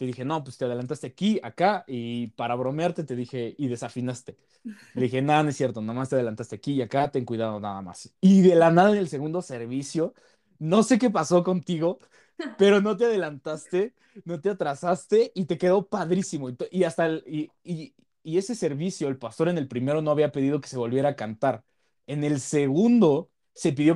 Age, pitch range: 20-39, 130-180 Hz